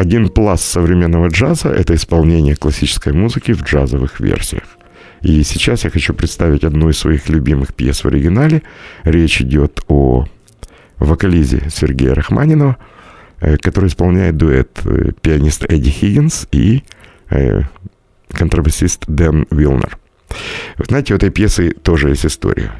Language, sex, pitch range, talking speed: Russian, male, 75-95 Hz, 125 wpm